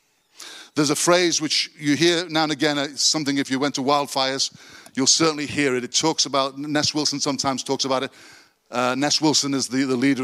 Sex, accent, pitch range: male, British, 130-170 Hz